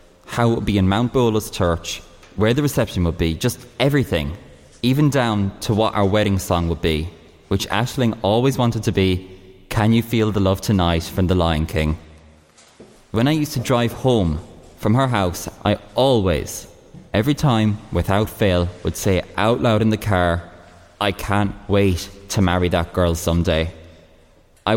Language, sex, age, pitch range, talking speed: English, male, 20-39, 85-110 Hz, 170 wpm